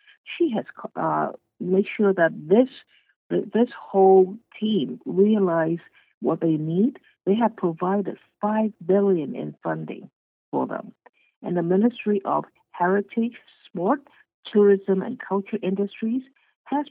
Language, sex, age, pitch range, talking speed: English, female, 60-79, 170-215 Hz, 120 wpm